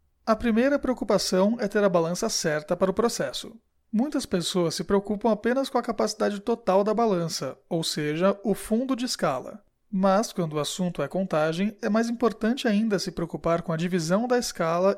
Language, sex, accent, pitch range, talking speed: Portuguese, male, Brazilian, 170-220 Hz, 180 wpm